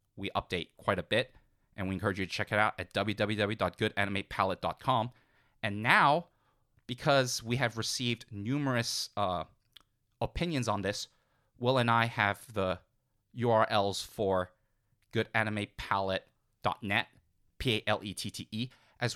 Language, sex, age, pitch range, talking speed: English, male, 30-49, 100-120 Hz, 115 wpm